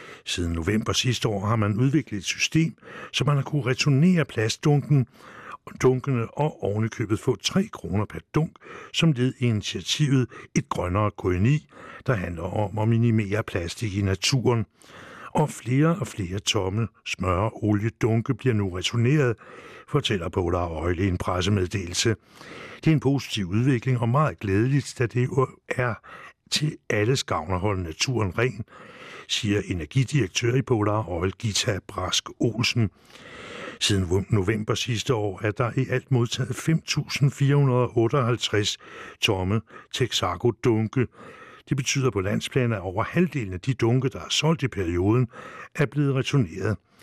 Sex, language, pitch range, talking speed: male, English, 100-130 Hz, 140 wpm